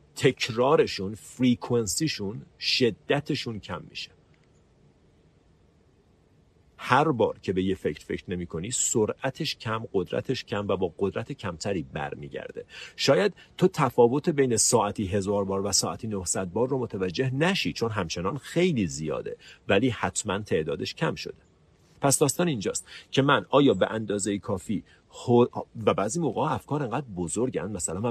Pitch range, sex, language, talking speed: 95-145 Hz, male, Persian, 135 wpm